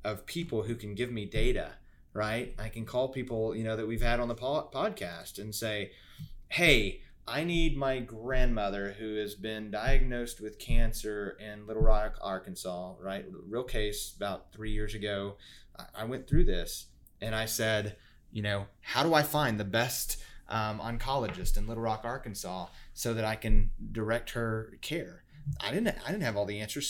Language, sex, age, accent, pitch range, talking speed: English, male, 30-49, American, 100-115 Hz, 180 wpm